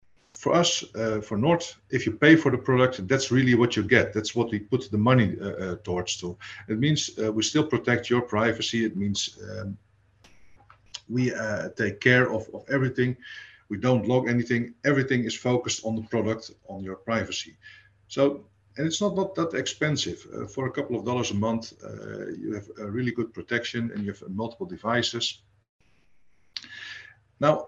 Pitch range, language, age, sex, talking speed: 105-125 Hz, English, 50-69, male, 185 wpm